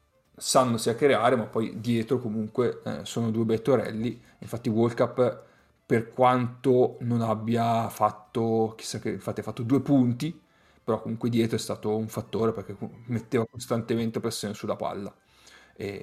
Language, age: Italian, 30-49